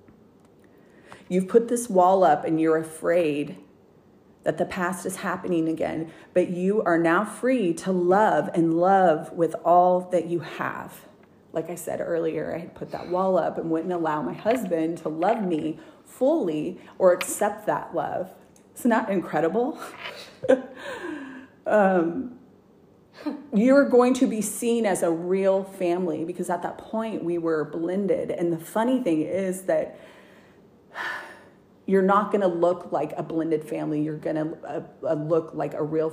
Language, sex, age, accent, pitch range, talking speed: English, female, 30-49, American, 160-195 Hz, 160 wpm